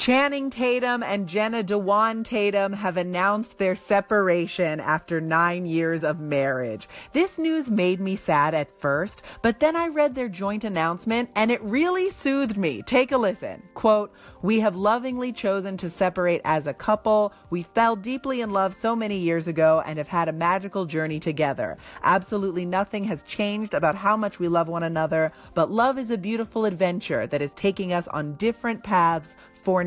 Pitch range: 165-250 Hz